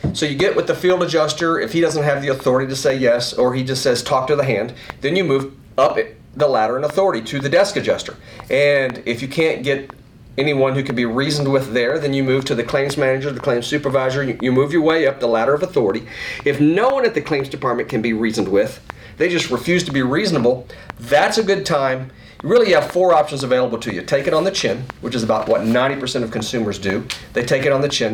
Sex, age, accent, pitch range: male, 40-59, American, 120-160 Hz